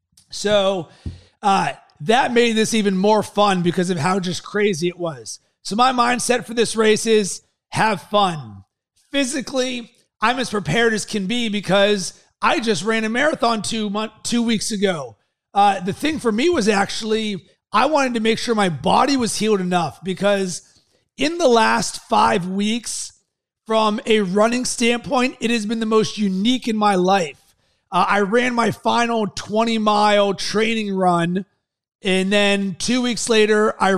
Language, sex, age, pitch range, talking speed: English, male, 30-49, 195-230 Hz, 160 wpm